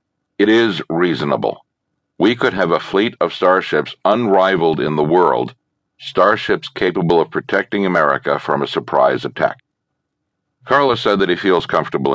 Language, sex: English, male